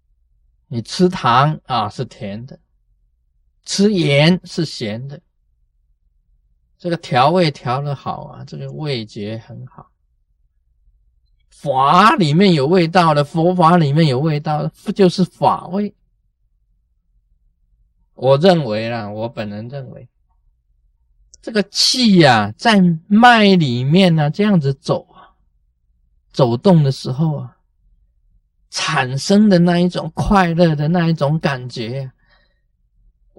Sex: male